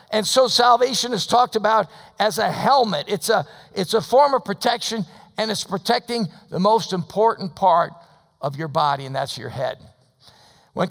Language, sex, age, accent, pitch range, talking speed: English, male, 50-69, American, 165-215 Hz, 165 wpm